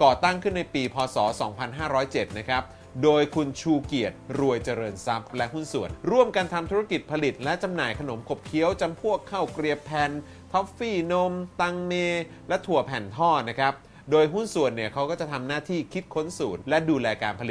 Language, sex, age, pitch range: Thai, male, 30-49, 130-175 Hz